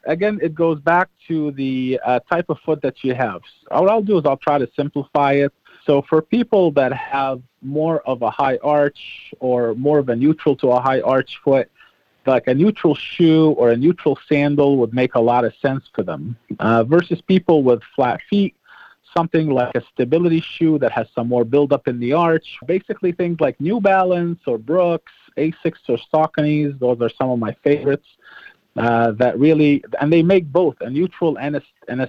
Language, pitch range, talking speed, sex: English, 125-160 Hz, 200 wpm, male